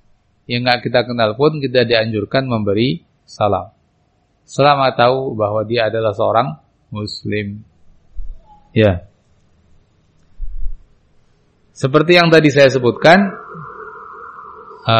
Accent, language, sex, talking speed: Indonesian, English, male, 90 wpm